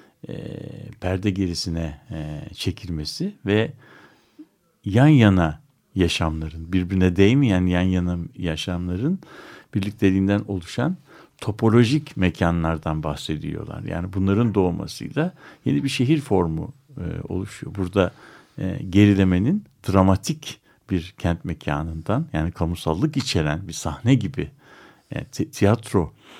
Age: 60-79